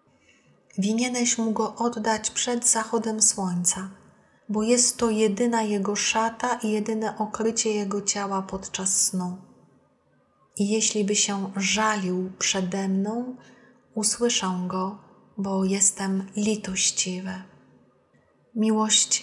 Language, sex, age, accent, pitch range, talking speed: Polish, female, 30-49, native, 190-220 Hz, 105 wpm